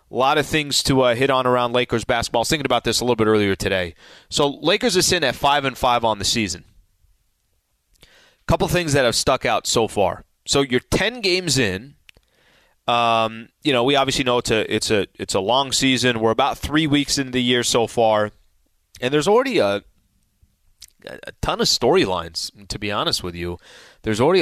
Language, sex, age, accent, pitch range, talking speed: English, male, 30-49, American, 105-140 Hz, 210 wpm